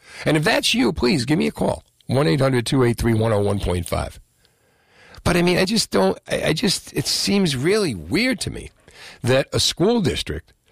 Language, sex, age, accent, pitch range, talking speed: English, male, 50-69, American, 95-130 Hz, 160 wpm